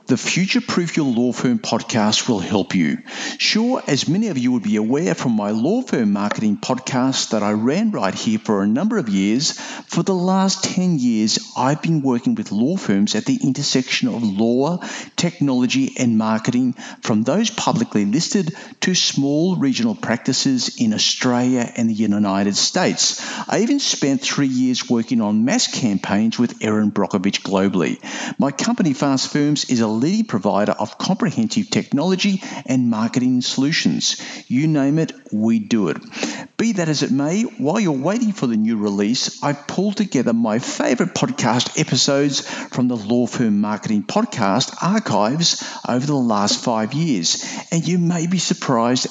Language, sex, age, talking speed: English, male, 50-69, 165 wpm